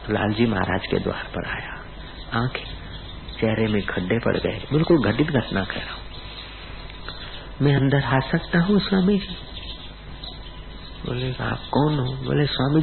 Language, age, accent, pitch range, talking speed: Hindi, 50-69, native, 100-135 Hz, 145 wpm